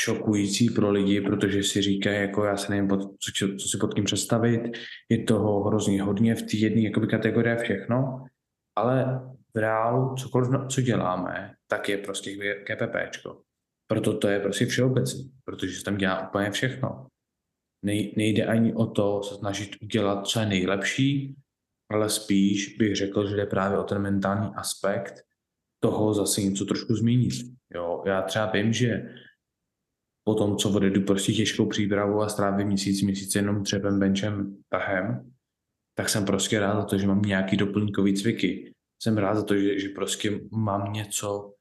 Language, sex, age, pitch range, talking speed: Czech, male, 20-39, 100-115 Hz, 165 wpm